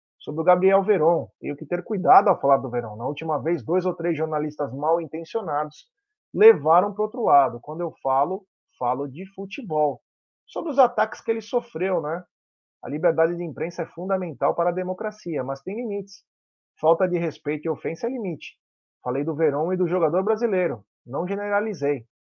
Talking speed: 180 wpm